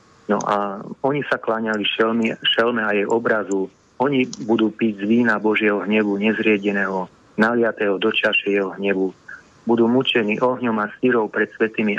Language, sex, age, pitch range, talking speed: Slovak, male, 30-49, 105-125 Hz, 150 wpm